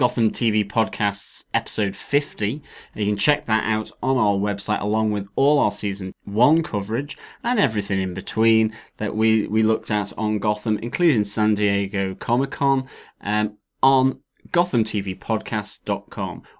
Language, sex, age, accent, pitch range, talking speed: English, male, 30-49, British, 100-125 Hz, 140 wpm